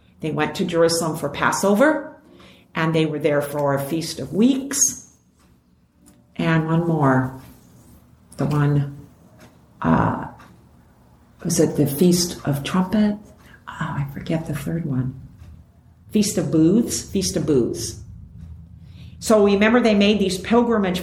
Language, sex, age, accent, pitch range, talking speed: English, female, 50-69, American, 160-220 Hz, 130 wpm